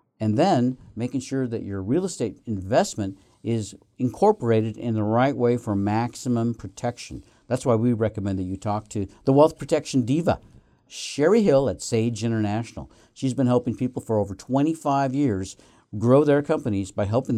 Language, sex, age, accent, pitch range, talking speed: English, male, 50-69, American, 105-135 Hz, 165 wpm